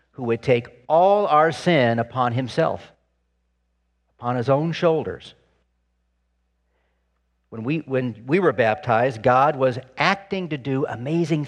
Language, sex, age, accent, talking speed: English, male, 50-69, American, 120 wpm